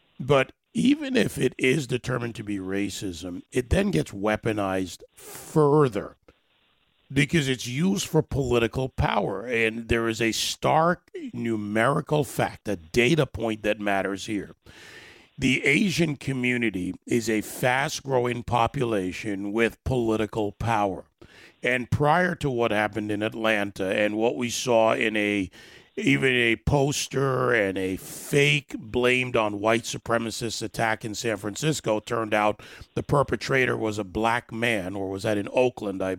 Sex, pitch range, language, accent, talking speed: male, 105-135 Hz, English, American, 140 wpm